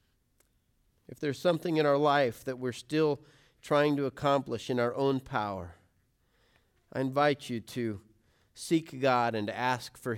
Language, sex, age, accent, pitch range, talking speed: English, male, 40-59, American, 115-160 Hz, 155 wpm